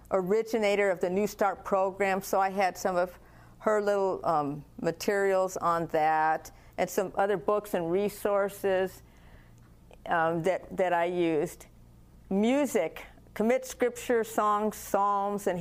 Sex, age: female, 50-69